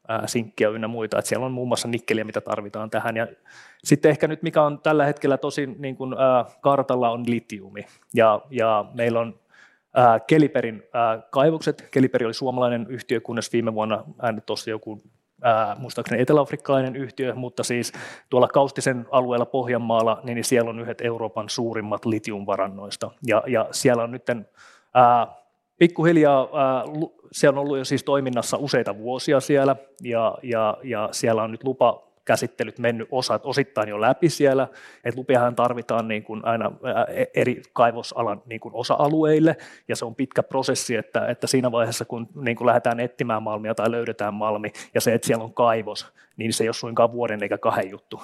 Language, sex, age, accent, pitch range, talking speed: Finnish, male, 20-39, native, 110-135 Hz, 165 wpm